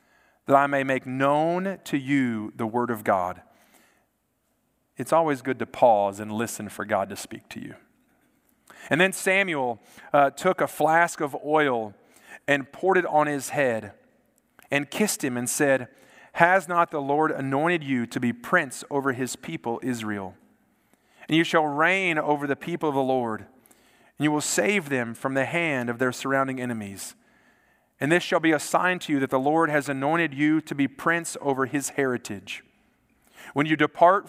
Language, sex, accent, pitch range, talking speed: English, male, American, 125-165 Hz, 180 wpm